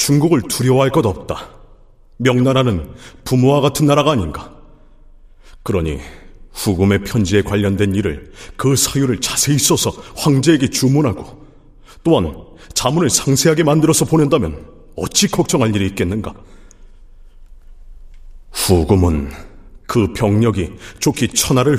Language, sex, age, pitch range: Korean, male, 40-59, 90-145 Hz